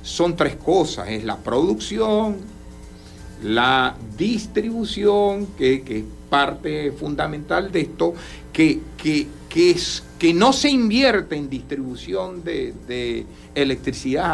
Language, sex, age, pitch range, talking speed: Spanish, male, 60-79, 125-205 Hz, 115 wpm